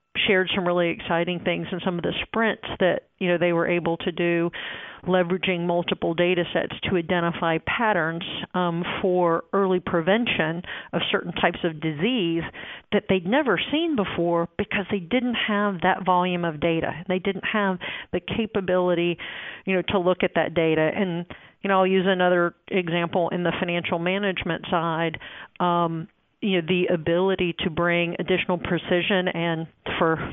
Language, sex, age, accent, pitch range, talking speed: English, female, 40-59, American, 170-195 Hz, 160 wpm